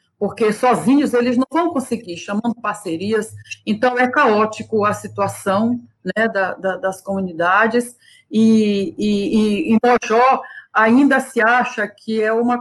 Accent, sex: Brazilian, female